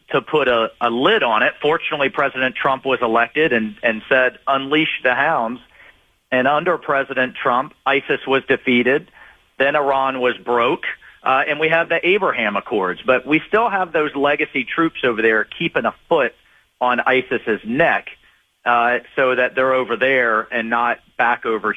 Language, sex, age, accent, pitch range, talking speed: English, male, 40-59, American, 120-150 Hz, 170 wpm